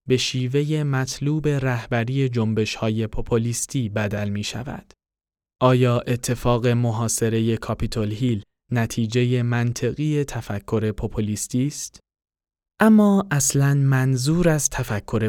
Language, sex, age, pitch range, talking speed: Persian, male, 20-39, 110-135 Hz, 100 wpm